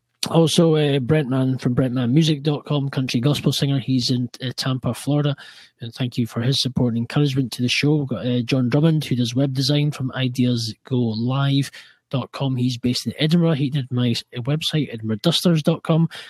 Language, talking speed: English, 165 wpm